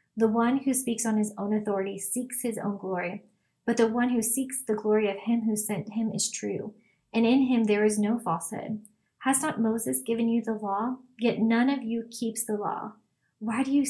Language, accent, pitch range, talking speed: English, American, 200-230 Hz, 215 wpm